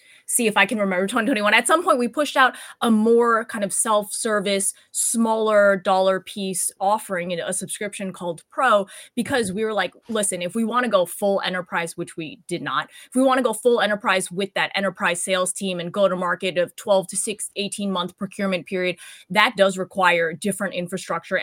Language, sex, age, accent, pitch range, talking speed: English, female, 20-39, American, 180-225 Hz, 200 wpm